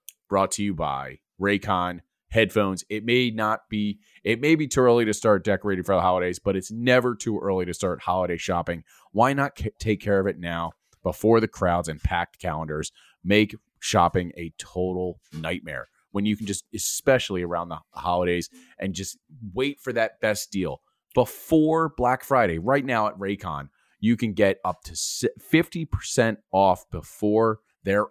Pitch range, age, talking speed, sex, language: 90-115 Hz, 30-49, 170 wpm, male, English